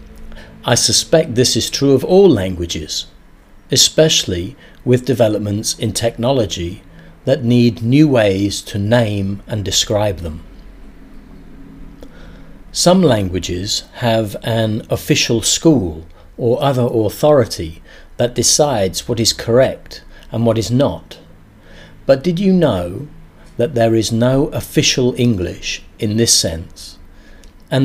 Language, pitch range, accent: English, 95-135 Hz, British